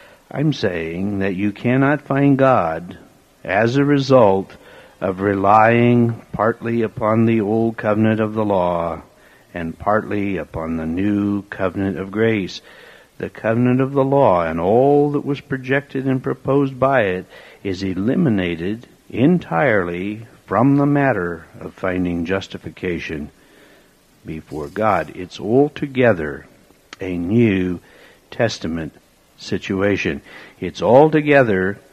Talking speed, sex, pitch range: 115 wpm, male, 90-130 Hz